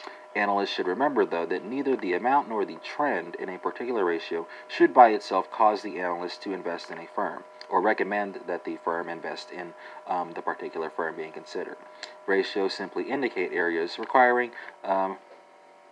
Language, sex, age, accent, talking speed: English, male, 40-59, American, 170 wpm